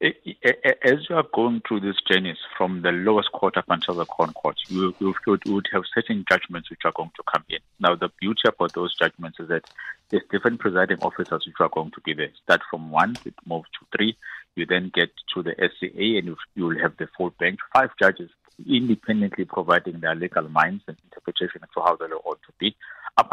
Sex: male